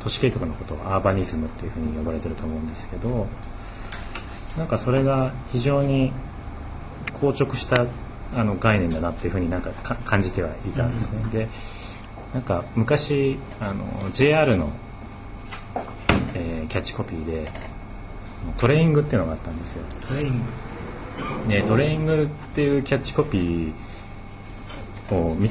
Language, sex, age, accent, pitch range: Japanese, male, 30-49, native, 90-120 Hz